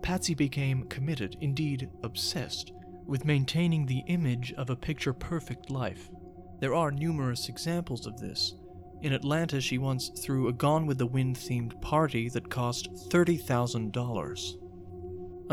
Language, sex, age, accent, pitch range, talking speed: English, male, 40-59, American, 115-155 Hz, 130 wpm